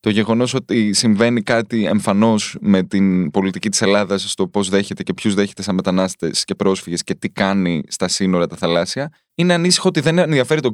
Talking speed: 190 wpm